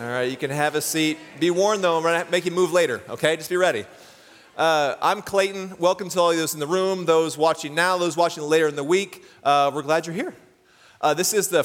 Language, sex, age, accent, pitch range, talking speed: English, male, 30-49, American, 145-180 Hz, 250 wpm